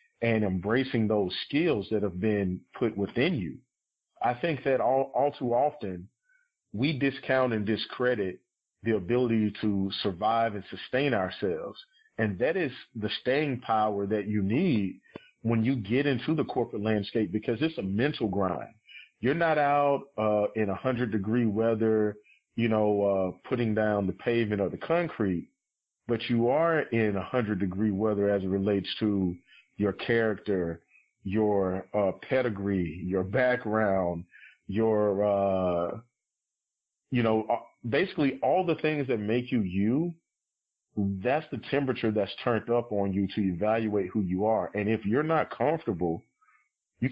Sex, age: male, 40-59